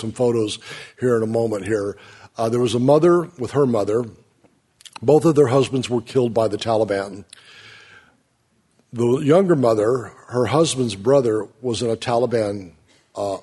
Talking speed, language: 150 wpm, English